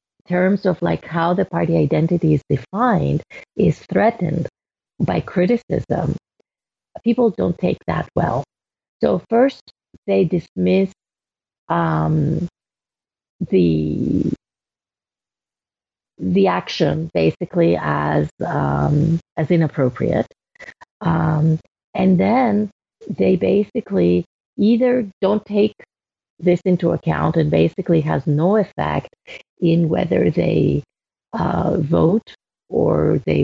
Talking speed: 95 wpm